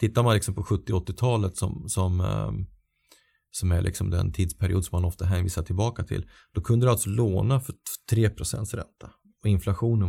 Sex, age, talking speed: male, 30-49, 180 wpm